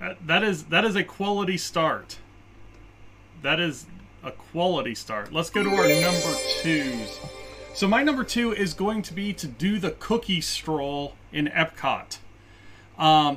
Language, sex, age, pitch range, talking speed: English, male, 30-49, 115-175 Hz, 155 wpm